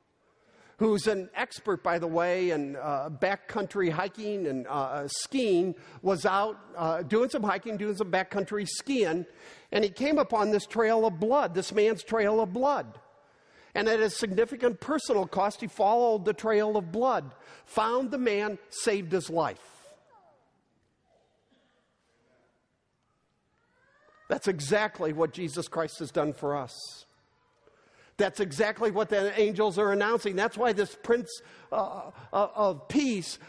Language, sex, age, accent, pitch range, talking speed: English, male, 50-69, American, 190-240 Hz, 140 wpm